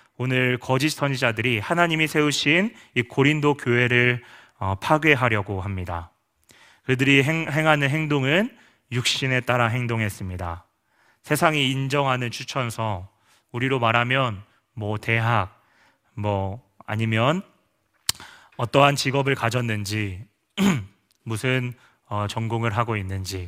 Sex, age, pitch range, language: male, 30-49, 110-140 Hz, Korean